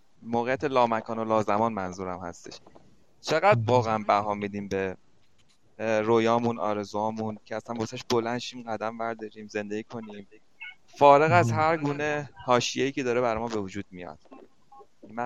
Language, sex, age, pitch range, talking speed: Persian, male, 30-49, 105-125 Hz, 135 wpm